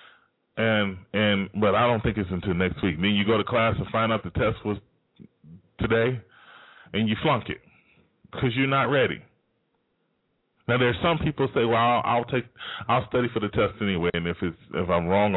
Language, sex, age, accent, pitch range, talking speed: English, male, 20-39, American, 105-130 Hz, 205 wpm